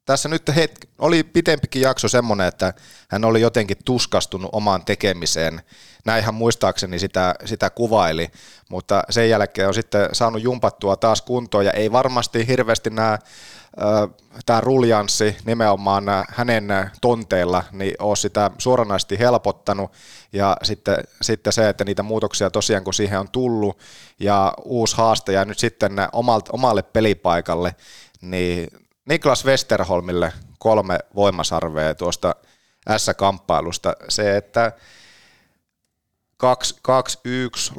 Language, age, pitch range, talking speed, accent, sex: Finnish, 30-49, 95-115 Hz, 115 wpm, native, male